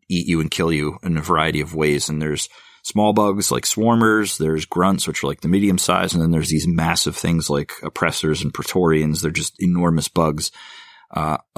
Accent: American